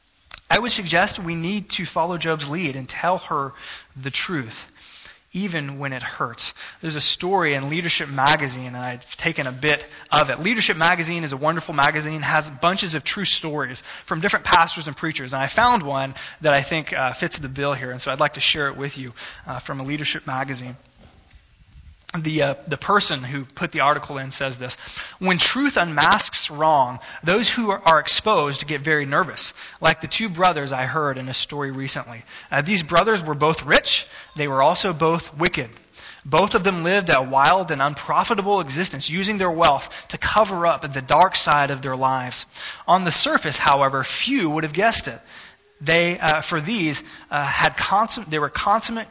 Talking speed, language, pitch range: 190 wpm, English, 140-180 Hz